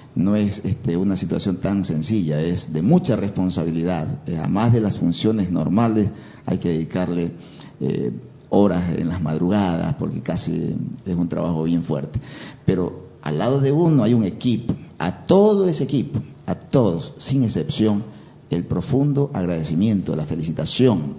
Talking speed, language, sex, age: 150 wpm, Spanish, male, 50-69